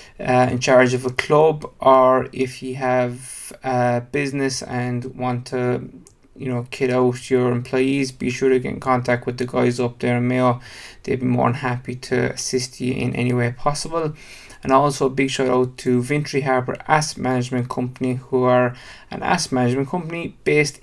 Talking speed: 190 wpm